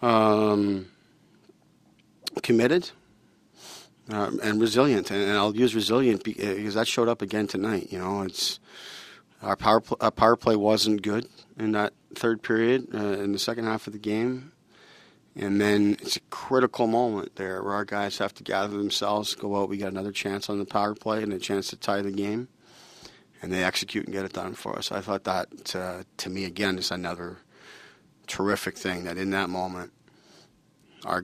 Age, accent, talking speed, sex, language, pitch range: 40-59, American, 185 wpm, male, English, 95-105 Hz